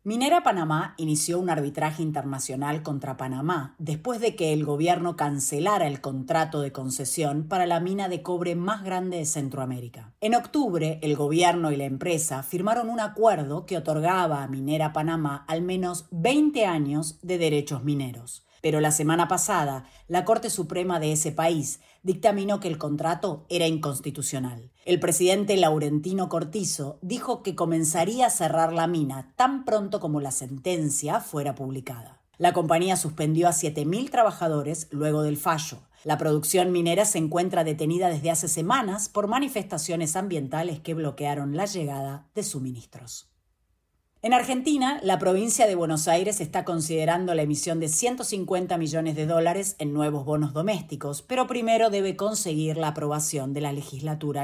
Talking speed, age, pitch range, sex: 155 wpm, 30-49, 150-185 Hz, female